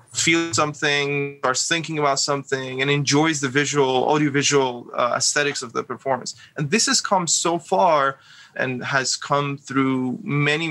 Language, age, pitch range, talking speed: English, 20-39, 130-155 Hz, 150 wpm